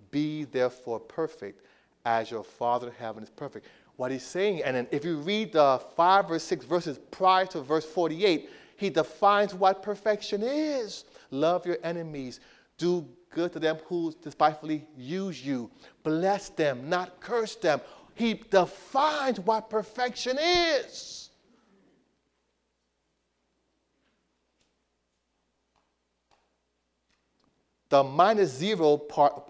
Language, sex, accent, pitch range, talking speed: English, male, American, 140-205 Hz, 115 wpm